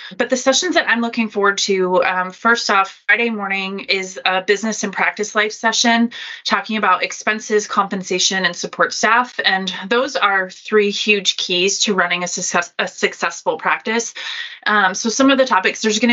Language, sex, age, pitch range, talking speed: English, female, 20-39, 180-225 Hz, 175 wpm